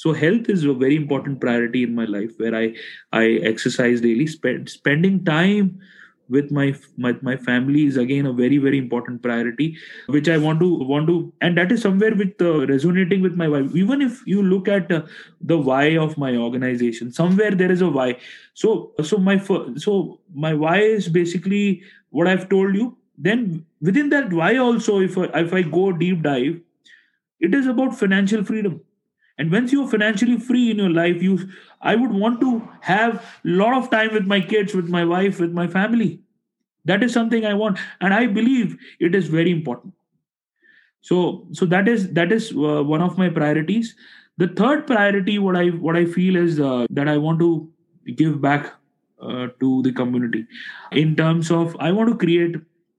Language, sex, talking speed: English, male, 190 wpm